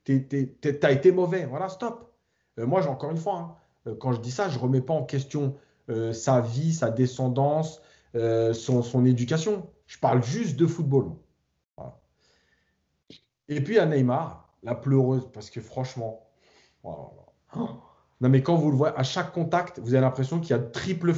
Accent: French